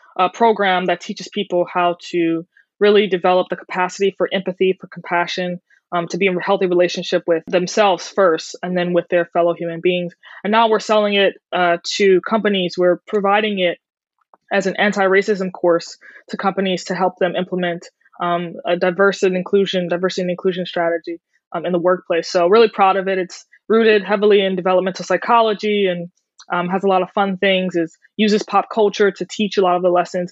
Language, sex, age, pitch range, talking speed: English, female, 20-39, 175-200 Hz, 190 wpm